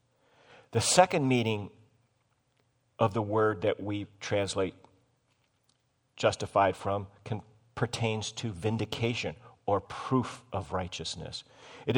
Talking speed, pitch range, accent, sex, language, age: 95 wpm, 100-130 Hz, American, male, English, 50-69